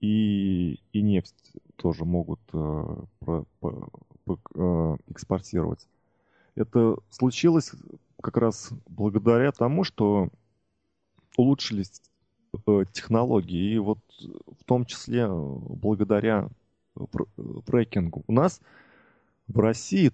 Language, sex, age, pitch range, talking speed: Russian, male, 20-39, 95-115 Hz, 100 wpm